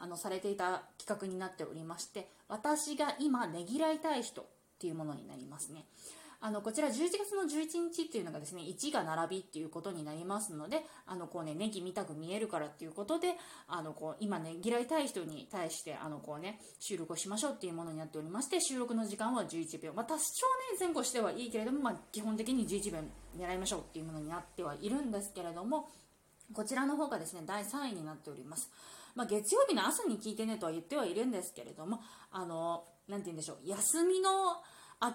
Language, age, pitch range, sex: Japanese, 20-39, 165-240 Hz, female